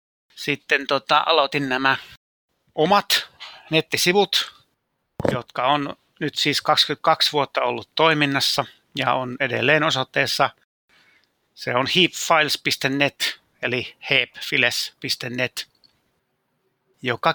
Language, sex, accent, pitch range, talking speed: Finnish, male, native, 125-155 Hz, 85 wpm